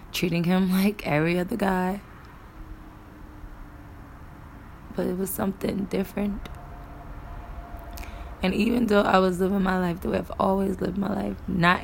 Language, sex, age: English, female, 20-39